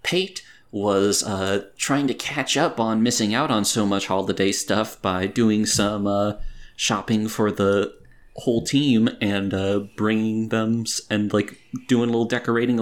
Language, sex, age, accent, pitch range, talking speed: English, male, 30-49, American, 100-120 Hz, 160 wpm